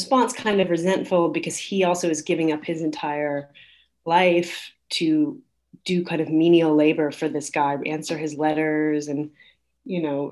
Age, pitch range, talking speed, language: 30-49, 155-185 Hz, 165 wpm, English